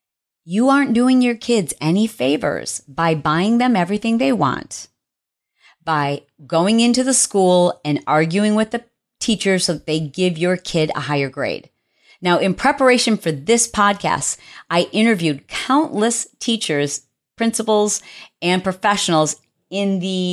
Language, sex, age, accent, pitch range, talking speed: English, female, 40-59, American, 155-215 Hz, 140 wpm